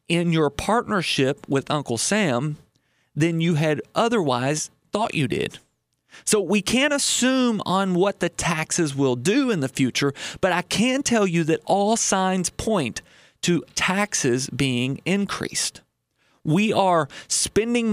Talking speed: 140 wpm